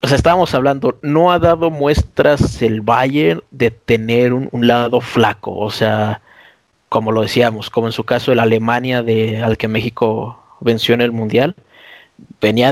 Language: Spanish